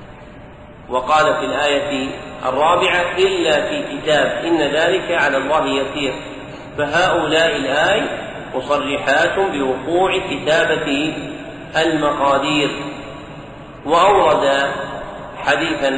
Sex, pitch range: male, 135-165 Hz